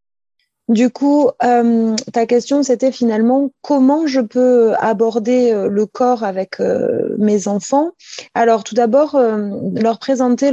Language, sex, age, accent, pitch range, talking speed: French, female, 20-39, French, 205-260 Hz, 130 wpm